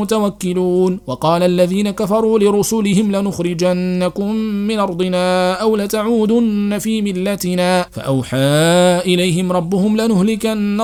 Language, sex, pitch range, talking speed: Arabic, male, 180-220 Hz, 85 wpm